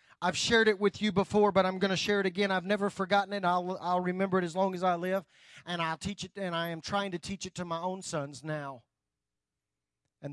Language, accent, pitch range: English, American, 140-210 Hz